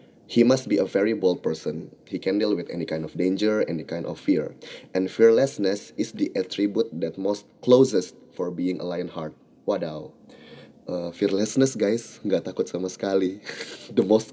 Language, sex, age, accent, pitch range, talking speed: Indonesian, male, 20-39, native, 90-130 Hz, 175 wpm